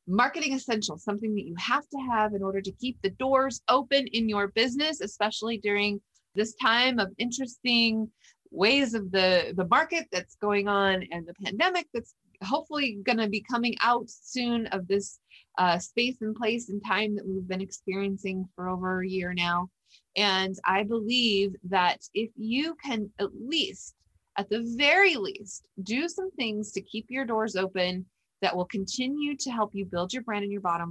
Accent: American